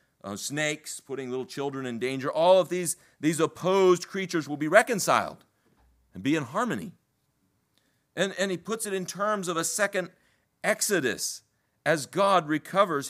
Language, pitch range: English, 130-175 Hz